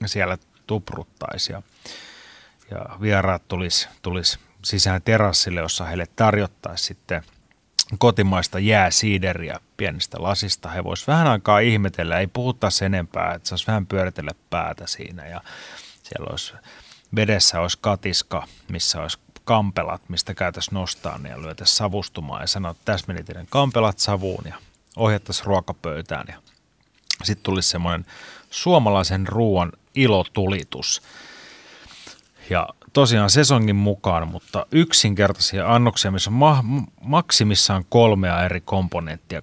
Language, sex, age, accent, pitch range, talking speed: Finnish, male, 30-49, native, 90-110 Hz, 110 wpm